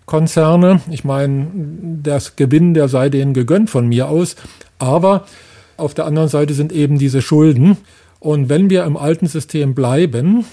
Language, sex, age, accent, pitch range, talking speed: German, male, 40-59, German, 130-155 Hz, 160 wpm